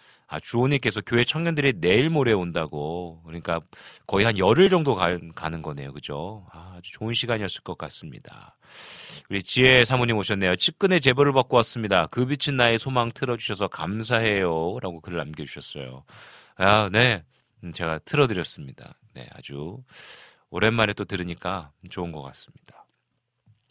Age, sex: 40-59, male